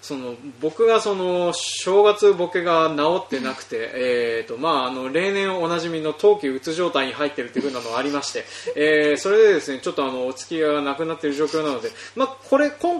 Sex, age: male, 20-39